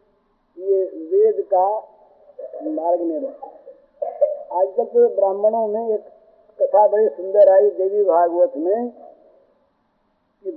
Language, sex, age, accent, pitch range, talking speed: Hindi, male, 50-69, native, 210-285 Hz, 100 wpm